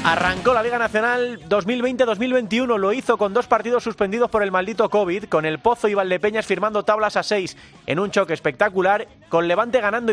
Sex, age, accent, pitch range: male, 30-49, Spanish, 175-225 Hz